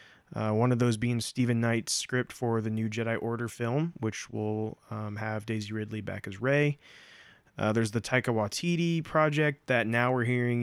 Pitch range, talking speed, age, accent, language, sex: 110-130 Hz, 185 wpm, 20-39, American, English, male